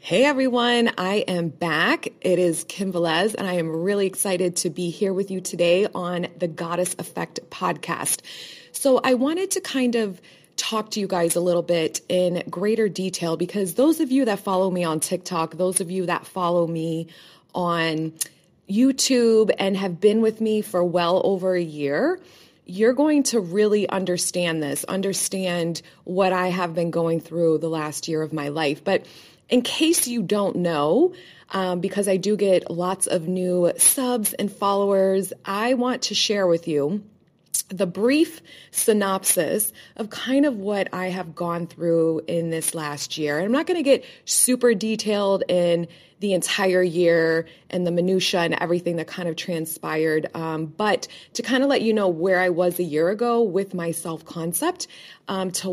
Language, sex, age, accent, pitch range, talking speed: English, female, 20-39, American, 170-210 Hz, 175 wpm